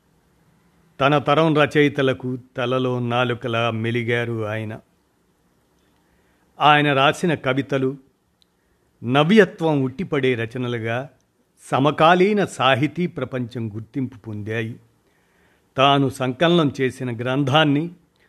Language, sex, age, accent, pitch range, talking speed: Telugu, male, 50-69, native, 120-145 Hz, 70 wpm